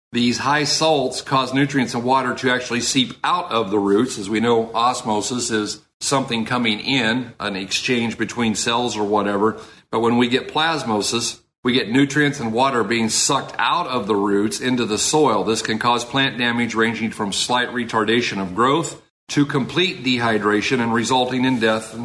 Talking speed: 180 wpm